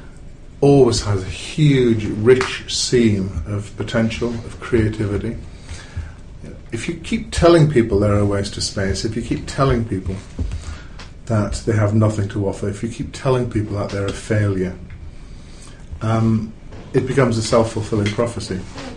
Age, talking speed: 40-59, 150 wpm